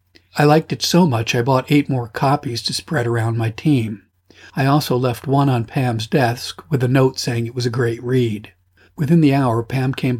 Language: English